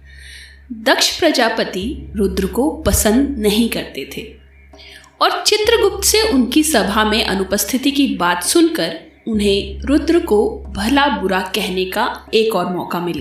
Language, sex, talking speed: Hindi, female, 130 wpm